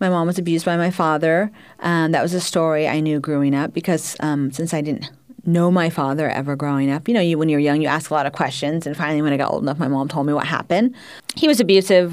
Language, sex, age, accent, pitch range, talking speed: English, female, 40-59, American, 150-185 Hz, 265 wpm